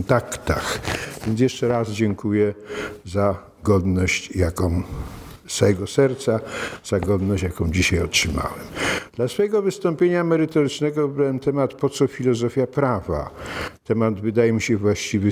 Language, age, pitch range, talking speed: Polish, 50-69, 100-140 Hz, 120 wpm